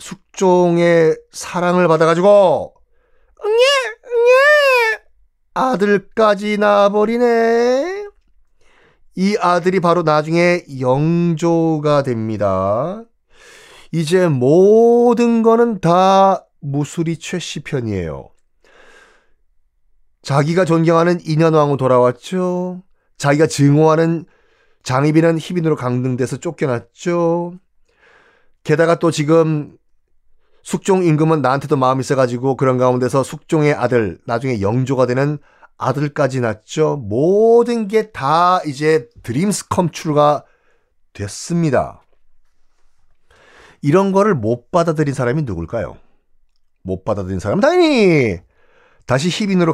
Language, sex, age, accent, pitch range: Korean, male, 30-49, native, 140-210 Hz